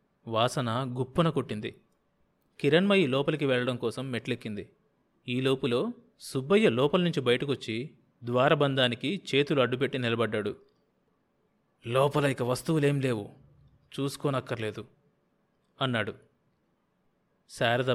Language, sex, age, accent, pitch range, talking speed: Telugu, male, 30-49, native, 120-140 Hz, 75 wpm